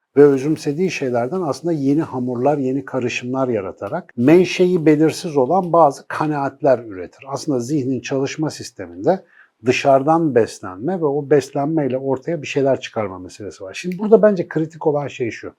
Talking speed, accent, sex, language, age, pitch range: 140 wpm, native, male, Turkish, 60-79, 120-155 Hz